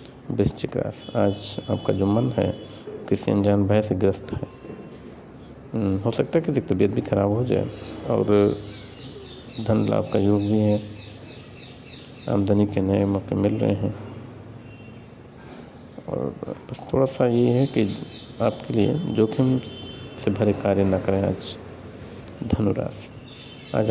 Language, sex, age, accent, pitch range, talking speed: Hindi, male, 50-69, native, 100-125 Hz, 135 wpm